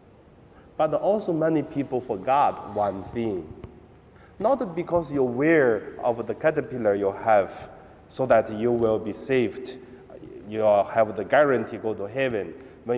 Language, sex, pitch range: Chinese, male, 115-155 Hz